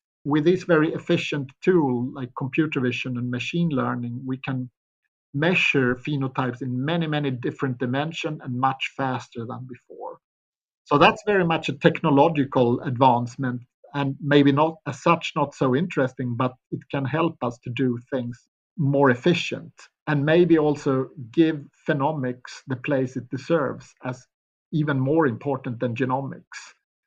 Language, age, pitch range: English, 50-69, 130-150 Hz